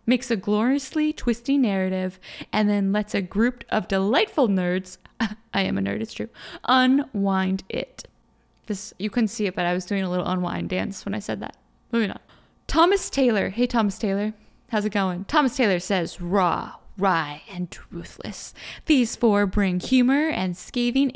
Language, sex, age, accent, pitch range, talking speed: English, female, 10-29, American, 190-250 Hz, 170 wpm